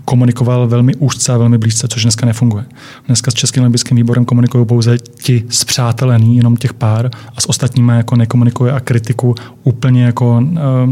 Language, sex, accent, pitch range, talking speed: Czech, male, native, 125-145 Hz, 165 wpm